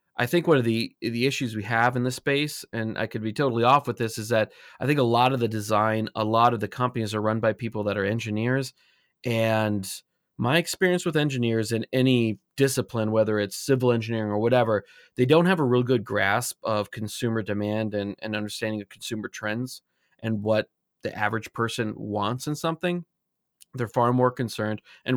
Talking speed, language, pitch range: 200 wpm, English, 110-125 Hz